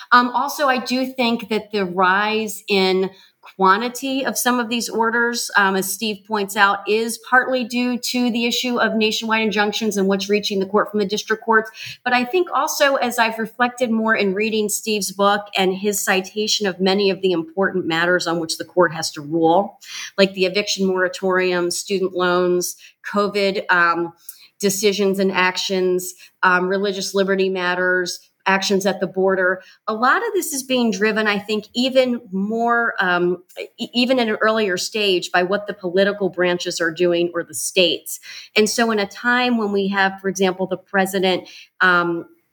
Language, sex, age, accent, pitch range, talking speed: English, female, 40-59, American, 180-220 Hz, 175 wpm